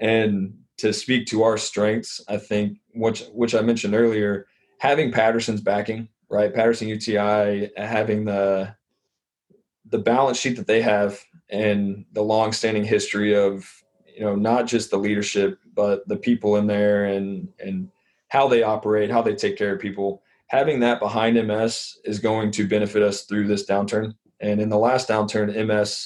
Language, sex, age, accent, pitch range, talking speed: English, male, 20-39, American, 100-115 Hz, 165 wpm